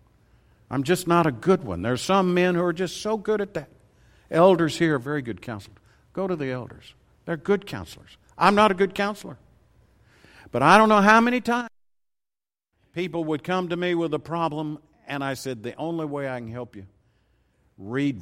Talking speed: 200 wpm